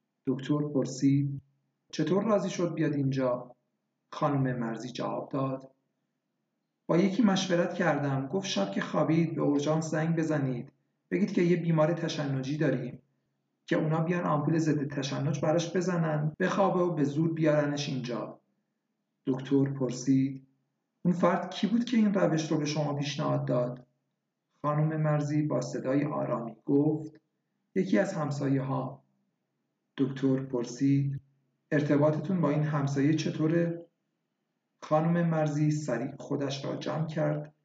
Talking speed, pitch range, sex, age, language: 130 wpm, 135-160 Hz, male, 50-69, Persian